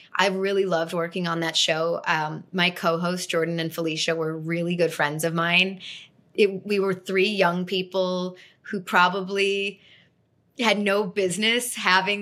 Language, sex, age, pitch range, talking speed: English, female, 20-39, 170-215 Hz, 150 wpm